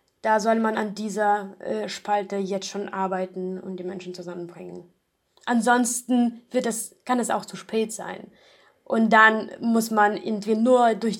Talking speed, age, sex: 160 wpm, 20-39, female